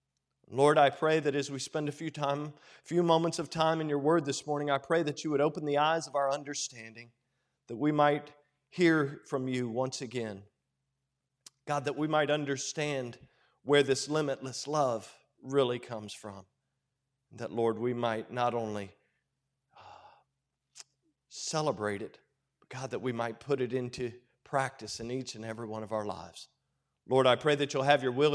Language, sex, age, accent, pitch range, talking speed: English, male, 40-59, American, 120-145 Hz, 175 wpm